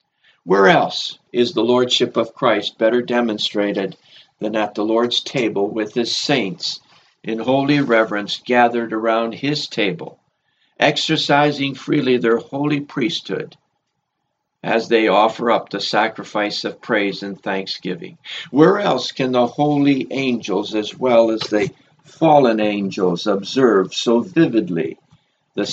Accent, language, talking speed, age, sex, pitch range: American, English, 130 wpm, 60-79, male, 110-145 Hz